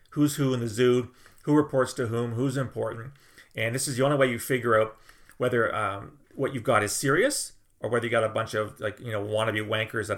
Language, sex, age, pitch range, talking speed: English, male, 40-59, 105-130 Hz, 235 wpm